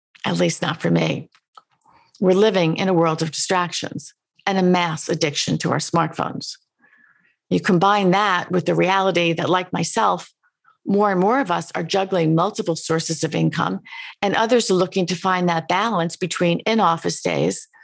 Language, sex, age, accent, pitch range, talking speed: English, female, 50-69, American, 170-220 Hz, 170 wpm